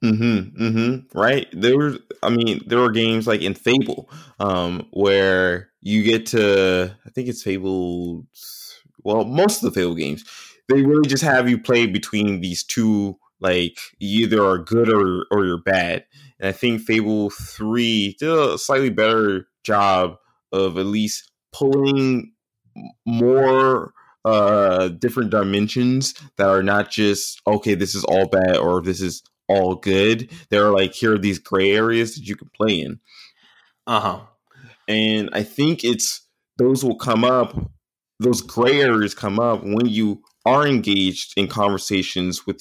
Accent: American